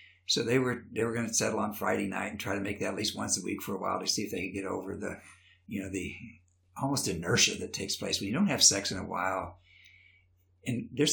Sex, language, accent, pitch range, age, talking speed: male, English, American, 95-155 Hz, 60-79, 265 wpm